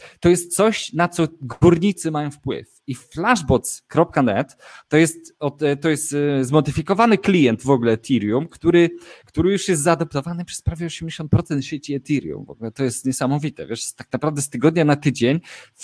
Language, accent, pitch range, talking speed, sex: Polish, native, 130-170 Hz, 155 wpm, male